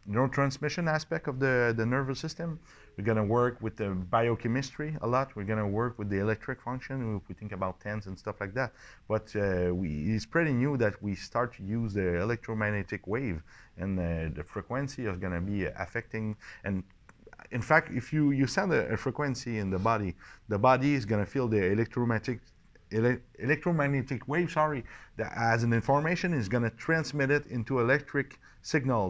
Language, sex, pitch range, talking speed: French, male, 100-130 Hz, 175 wpm